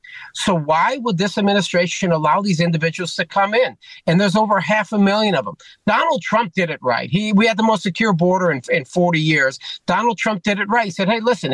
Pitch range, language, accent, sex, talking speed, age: 160-200 Hz, English, American, male, 230 wpm, 50-69